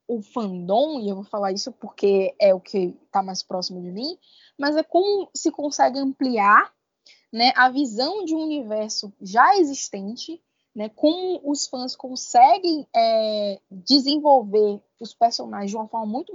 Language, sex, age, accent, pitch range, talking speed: Portuguese, female, 10-29, Brazilian, 220-325 Hz, 160 wpm